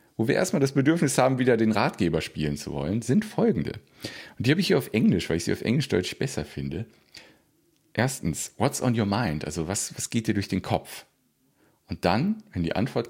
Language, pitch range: German, 95-135 Hz